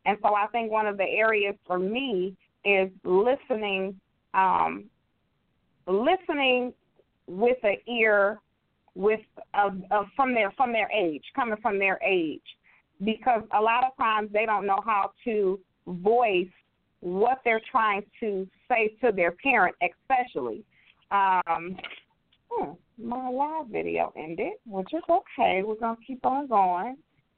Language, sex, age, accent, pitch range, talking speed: English, female, 40-59, American, 190-240 Hz, 140 wpm